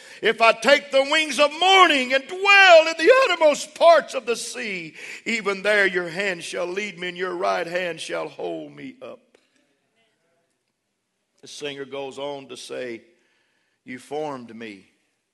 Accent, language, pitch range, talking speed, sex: American, English, 135-180 Hz, 155 wpm, male